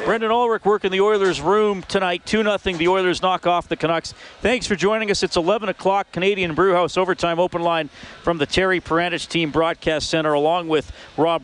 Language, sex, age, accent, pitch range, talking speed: English, male, 40-59, American, 140-175 Hz, 190 wpm